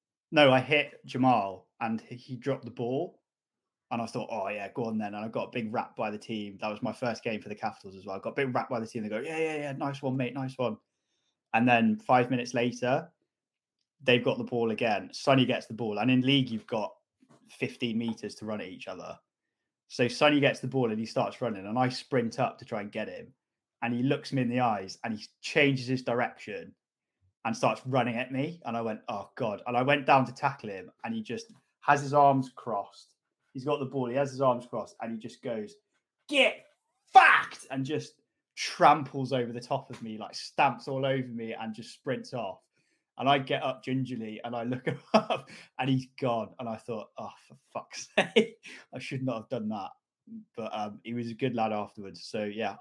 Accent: British